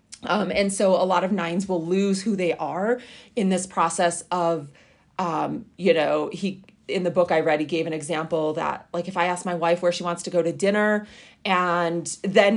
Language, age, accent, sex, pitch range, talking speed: English, 30-49, American, female, 170-210 Hz, 215 wpm